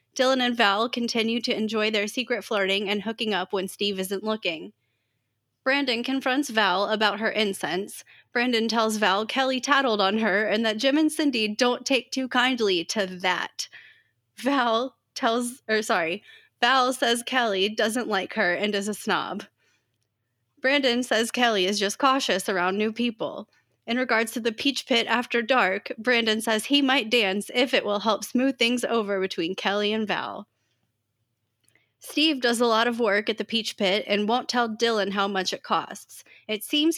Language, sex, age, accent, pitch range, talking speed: English, female, 20-39, American, 195-245 Hz, 175 wpm